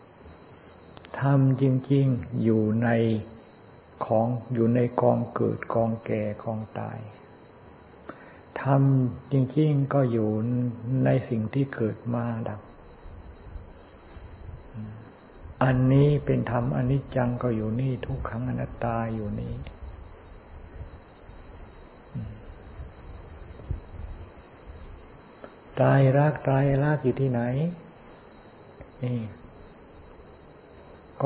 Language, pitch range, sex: Thai, 90-130 Hz, male